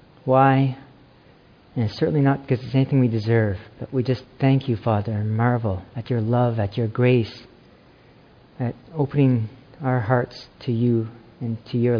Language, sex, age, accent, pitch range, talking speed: English, male, 50-69, American, 115-145 Hz, 165 wpm